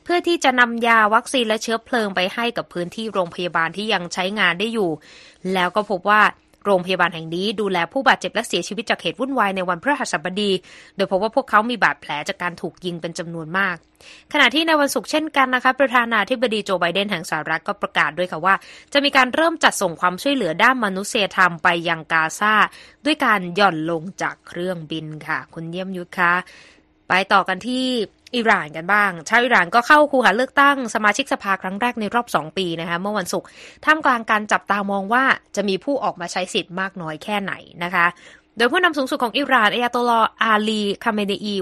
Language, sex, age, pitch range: Thai, female, 20-39, 180-235 Hz